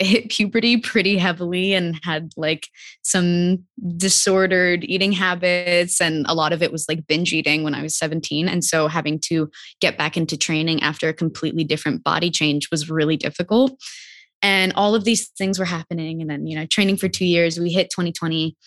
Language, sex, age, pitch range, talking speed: English, female, 20-39, 155-175 Hz, 195 wpm